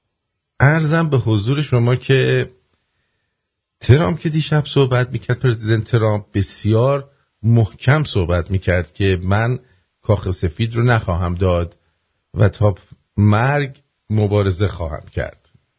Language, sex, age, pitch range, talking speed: English, male, 50-69, 90-115 Hz, 115 wpm